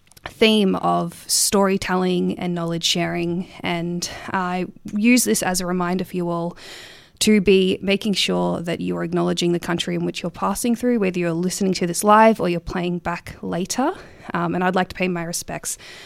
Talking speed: 185 wpm